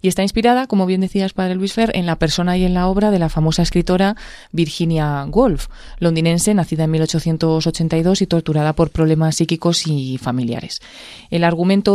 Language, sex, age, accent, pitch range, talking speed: Spanish, female, 20-39, Spanish, 160-190 Hz, 175 wpm